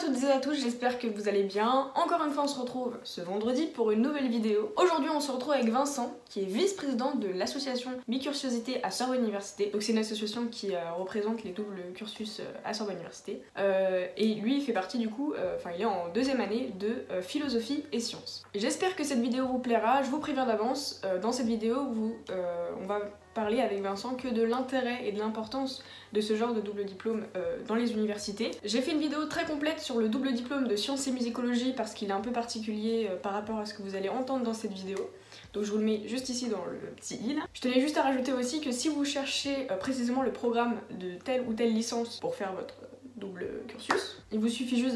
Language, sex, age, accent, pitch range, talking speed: French, female, 20-39, French, 205-255 Hz, 235 wpm